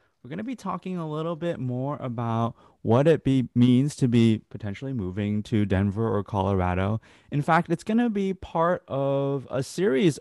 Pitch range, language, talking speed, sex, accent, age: 105-135 Hz, English, 175 wpm, male, American, 20-39